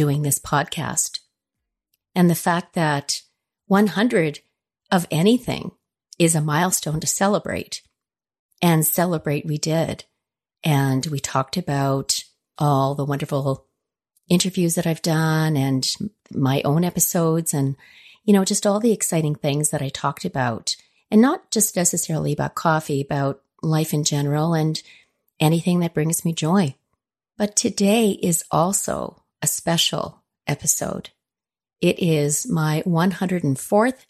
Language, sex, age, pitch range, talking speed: English, female, 40-59, 145-190 Hz, 130 wpm